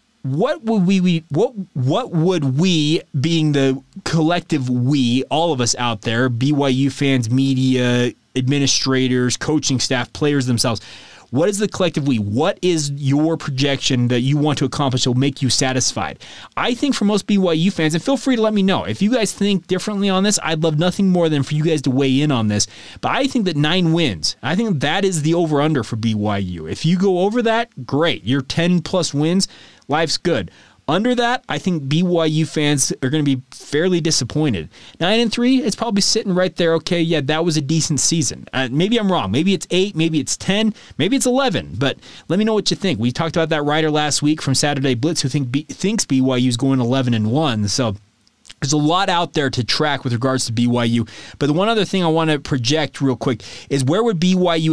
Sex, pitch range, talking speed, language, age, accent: male, 130-175 Hz, 215 wpm, English, 30-49, American